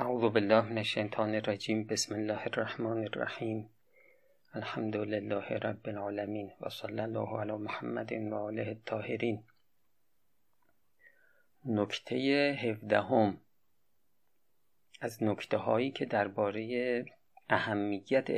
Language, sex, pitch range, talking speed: Persian, male, 105-120 Hz, 90 wpm